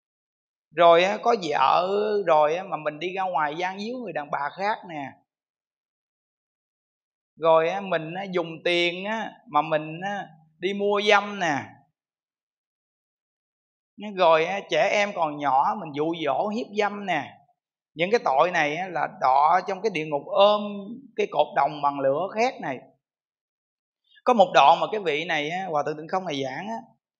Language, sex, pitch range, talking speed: Vietnamese, male, 160-215 Hz, 150 wpm